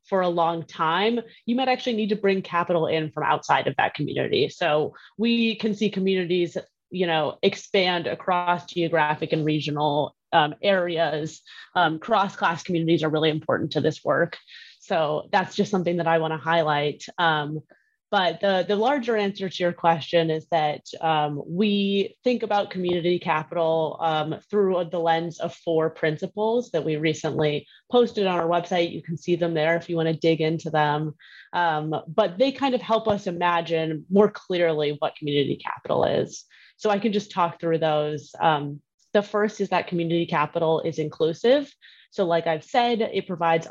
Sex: female